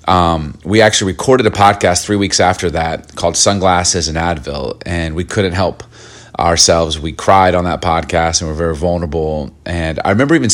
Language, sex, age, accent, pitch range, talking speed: English, male, 30-49, American, 85-105 Hz, 190 wpm